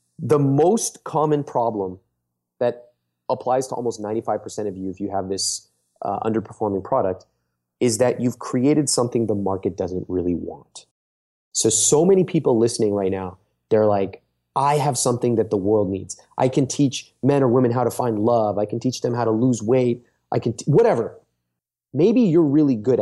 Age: 30-49